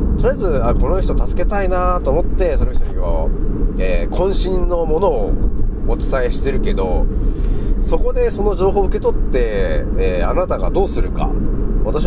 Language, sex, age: Japanese, male, 30-49